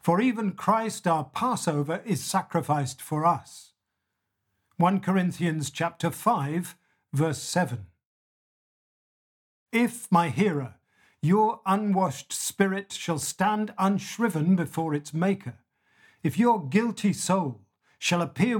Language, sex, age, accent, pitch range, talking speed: English, male, 50-69, British, 150-200 Hz, 105 wpm